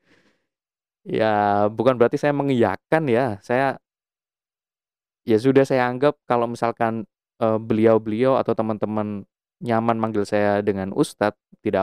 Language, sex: Indonesian, male